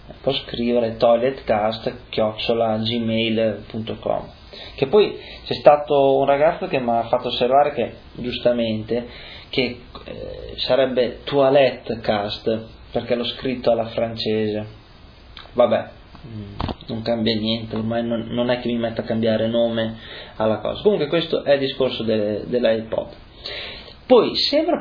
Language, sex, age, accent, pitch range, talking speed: Italian, male, 20-39, native, 115-135 Hz, 125 wpm